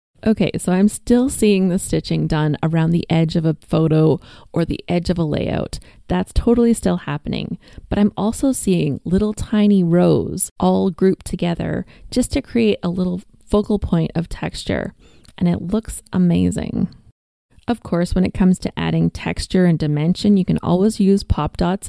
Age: 30-49